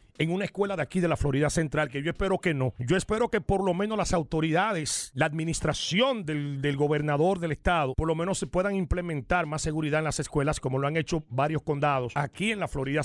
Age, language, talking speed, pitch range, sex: 40-59, English, 230 wpm, 150-210 Hz, male